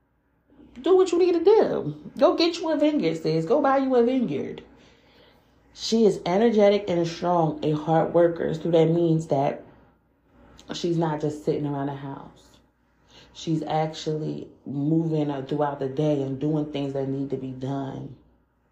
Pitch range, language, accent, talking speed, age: 155-200 Hz, English, American, 160 wpm, 30-49